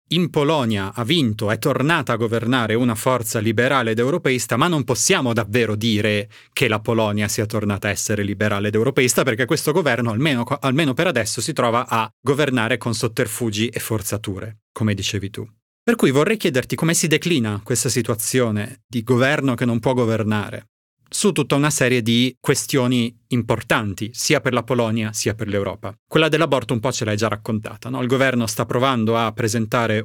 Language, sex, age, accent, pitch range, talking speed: Italian, male, 30-49, native, 110-135 Hz, 180 wpm